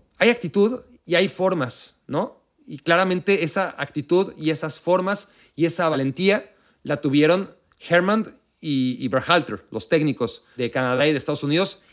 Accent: Mexican